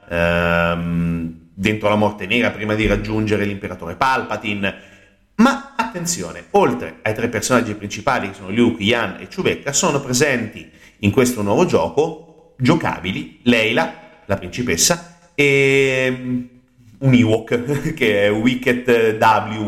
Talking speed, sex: 120 wpm, male